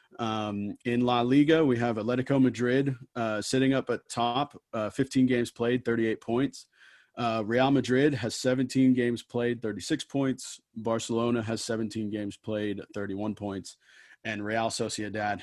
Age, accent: 30-49, American